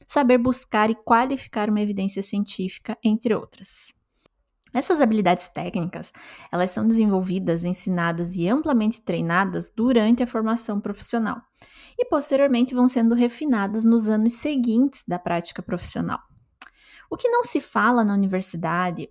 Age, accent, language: 20-39, Brazilian, Portuguese